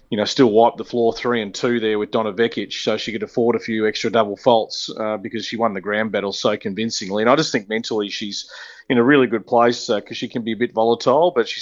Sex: male